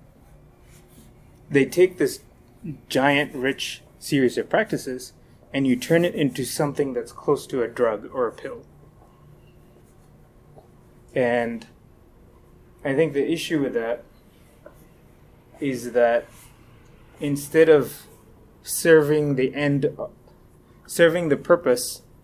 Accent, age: American, 30-49